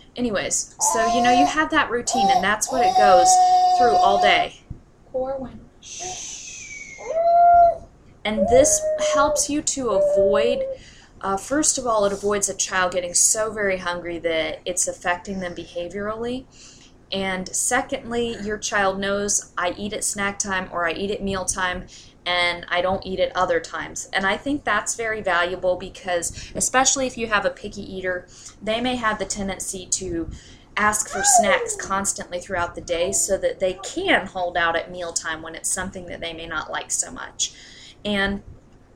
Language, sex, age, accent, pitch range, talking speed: English, female, 20-39, American, 180-225 Hz, 165 wpm